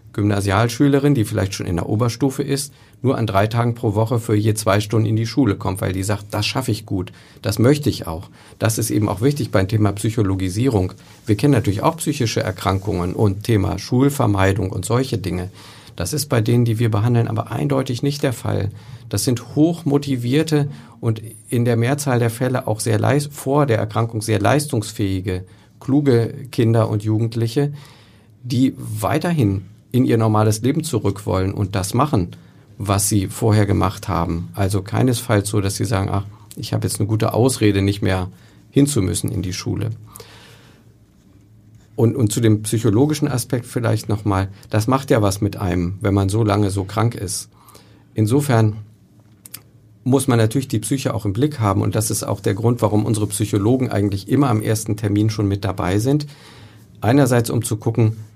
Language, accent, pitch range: German, German, 105-125 Hz